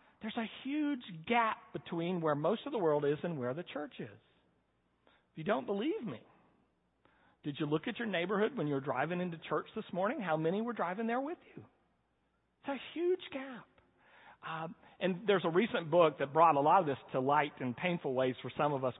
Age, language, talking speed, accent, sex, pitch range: 40-59, English, 210 wpm, American, male, 155-215 Hz